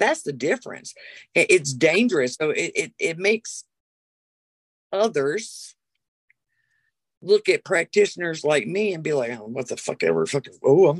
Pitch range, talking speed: 175-280 Hz, 145 wpm